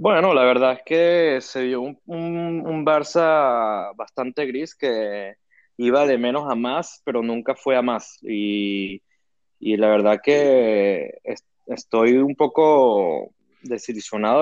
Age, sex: 20-39, male